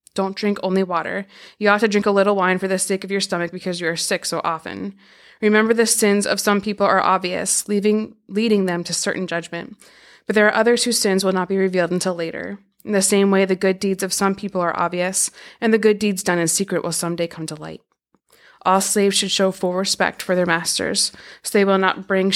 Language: English